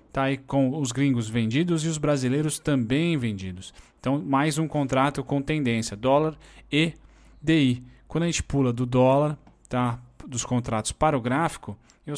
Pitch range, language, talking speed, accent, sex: 120-140 Hz, Portuguese, 150 wpm, Brazilian, male